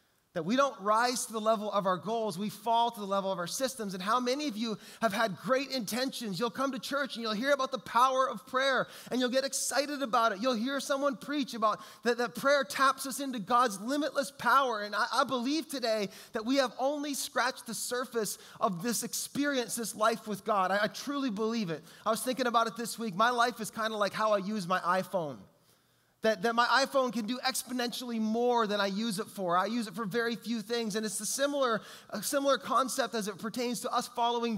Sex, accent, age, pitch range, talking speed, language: male, American, 20-39, 210-260 Hz, 235 wpm, English